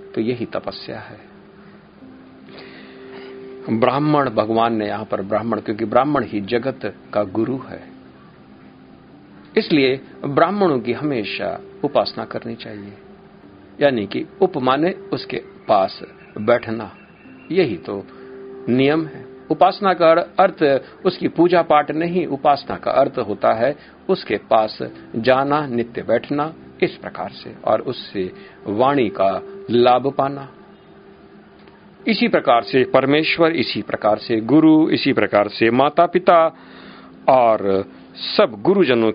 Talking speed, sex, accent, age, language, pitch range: 115 wpm, male, native, 50-69, Hindi, 105-160 Hz